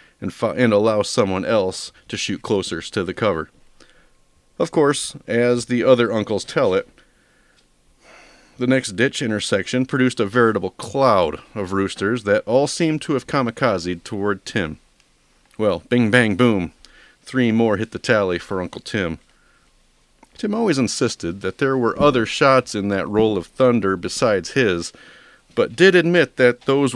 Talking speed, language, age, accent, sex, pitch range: 155 wpm, English, 40-59, American, male, 100-130 Hz